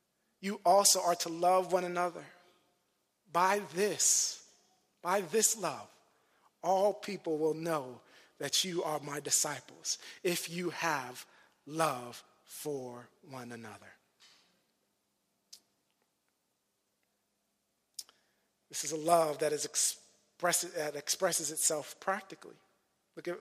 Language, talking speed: English, 95 wpm